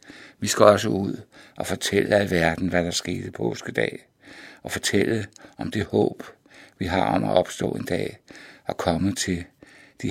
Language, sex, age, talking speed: Danish, male, 60-79, 165 wpm